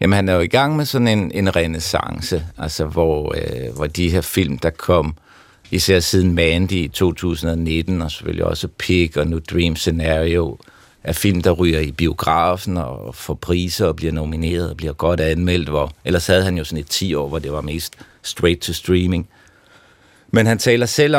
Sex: male